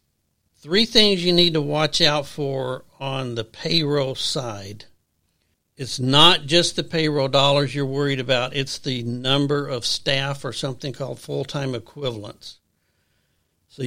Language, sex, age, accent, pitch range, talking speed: English, male, 60-79, American, 125-155 Hz, 140 wpm